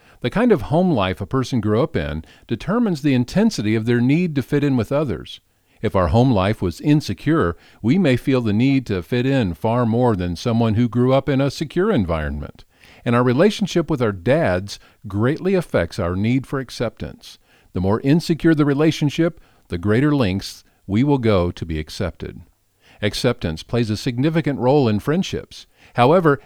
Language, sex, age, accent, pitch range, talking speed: English, male, 50-69, American, 100-150 Hz, 180 wpm